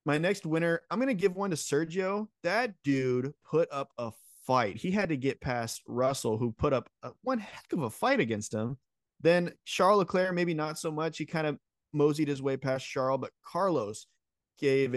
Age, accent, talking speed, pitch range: 20-39, American, 200 wpm, 115-155 Hz